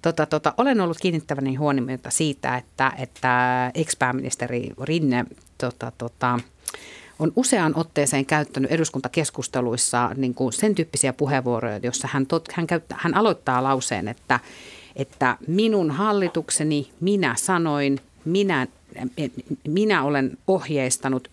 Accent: native